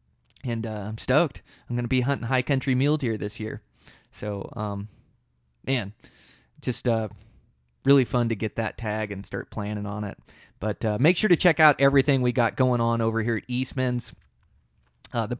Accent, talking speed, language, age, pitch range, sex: American, 190 wpm, English, 20-39, 110-135 Hz, male